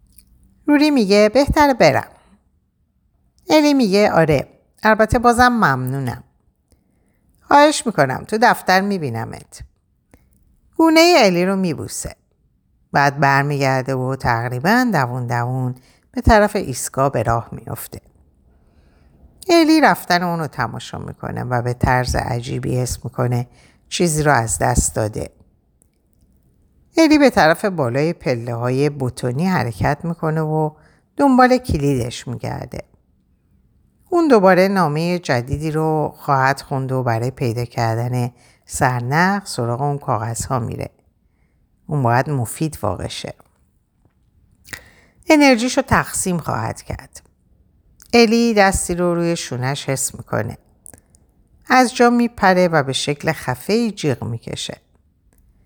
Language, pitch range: Persian, 120-195 Hz